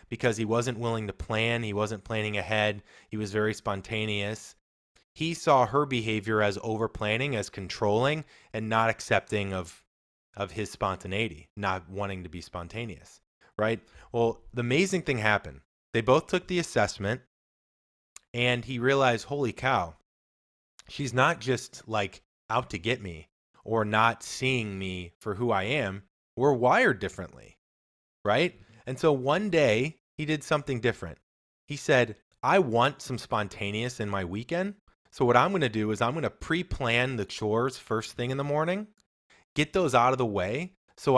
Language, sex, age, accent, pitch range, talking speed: English, male, 20-39, American, 100-130 Hz, 165 wpm